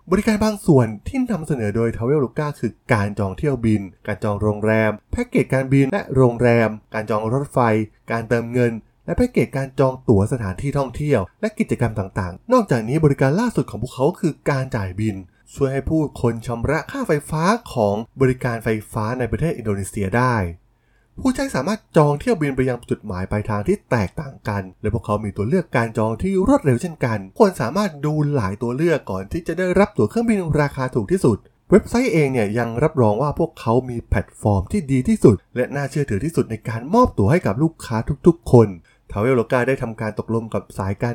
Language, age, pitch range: Thai, 20-39, 110-155 Hz